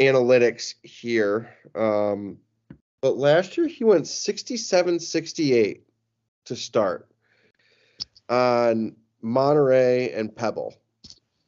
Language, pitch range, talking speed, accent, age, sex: English, 110-135 Hz, 80 wpm, American, 20-39, male